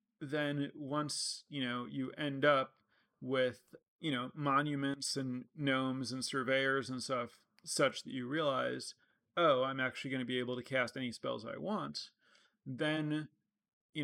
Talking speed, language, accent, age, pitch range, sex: 155 wpm, English, American, 30-49, 125-145 Hz, male